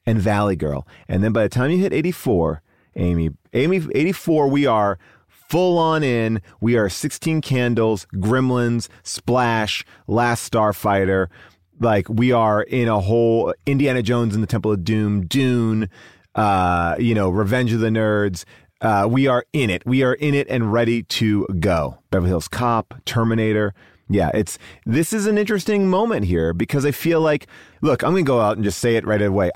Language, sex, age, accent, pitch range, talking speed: English, male, 30-49, American, 100-130 Hz, 180 wpm